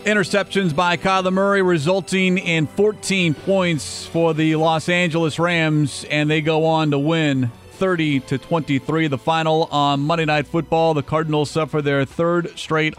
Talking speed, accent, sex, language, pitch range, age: 150 wpm, American, male, English, 135-170 Hz, 40-59